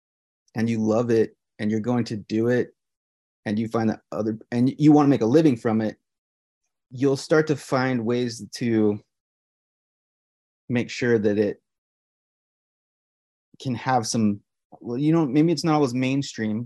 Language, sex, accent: English, male, American